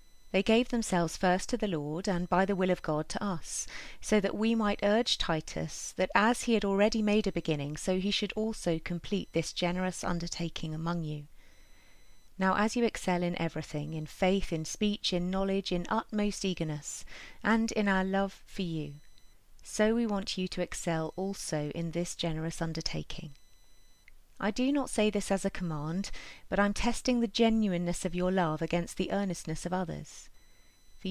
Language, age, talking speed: English, 30-49, 180 wpm